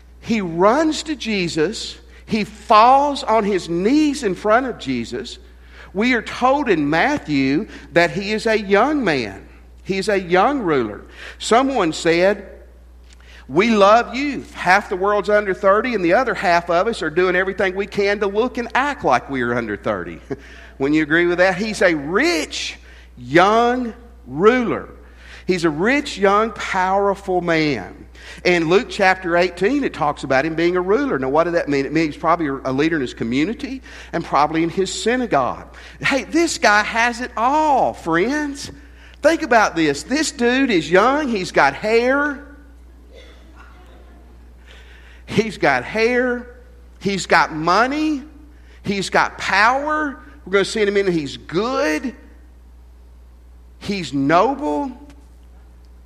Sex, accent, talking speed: male, American, 150 wpm